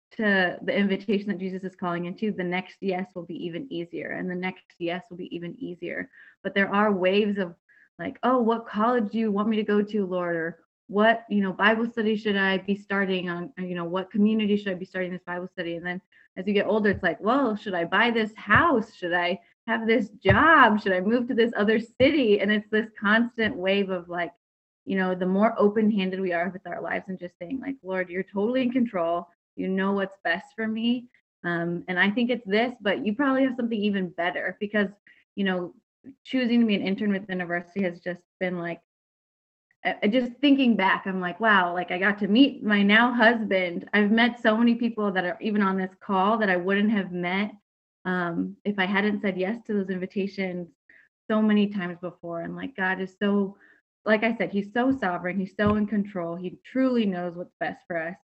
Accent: American